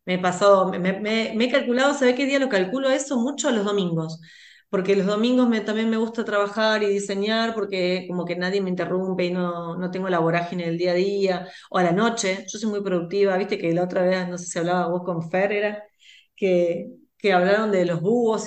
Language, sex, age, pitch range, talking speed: Spanish, female, 30-49, 170-200 Hz, 220 wpm